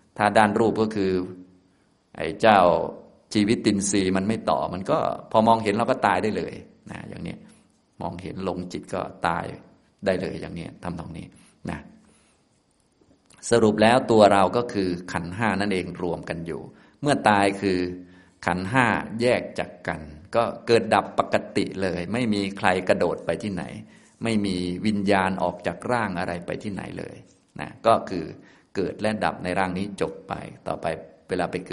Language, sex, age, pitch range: Thai, male, 30-49, 95-115 Hz